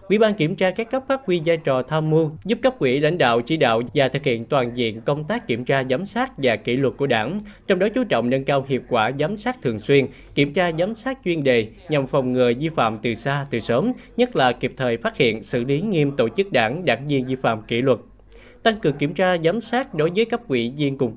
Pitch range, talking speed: 125-185 Hz, 260 wpm